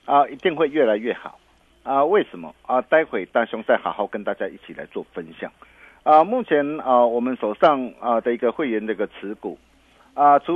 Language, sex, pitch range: Chinese, male, 115-150 Hz